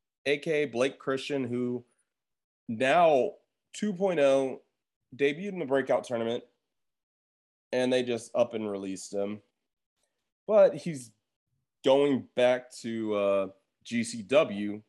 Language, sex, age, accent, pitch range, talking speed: English, male, 20-39, American, 105-150 Hz, 100 wpm